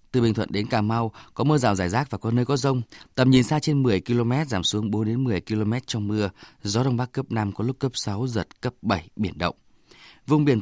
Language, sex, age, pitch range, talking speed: Vietnamese, male, 20-39, 110-140 Hz, 260 wpm